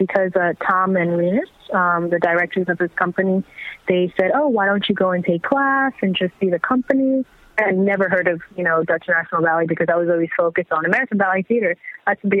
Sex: female